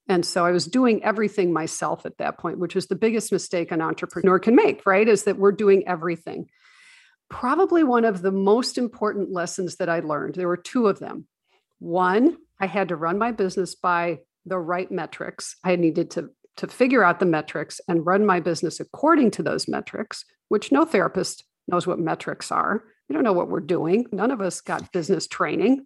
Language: English